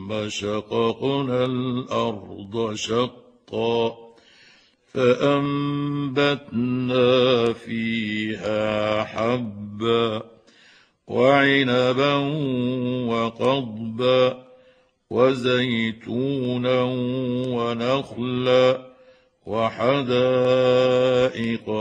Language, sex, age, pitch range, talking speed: Arabic, male, 60-79, 115-135 Hz, 30 wpm